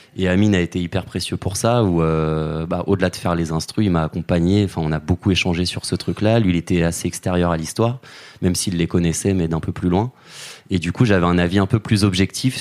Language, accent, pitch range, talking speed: French, French, 85-100 Hz, 250 wpm